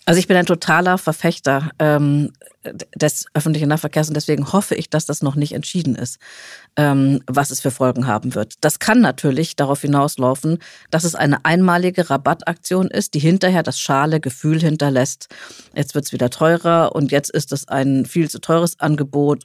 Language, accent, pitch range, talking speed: German, German, 145-175 Hz, 175 wpm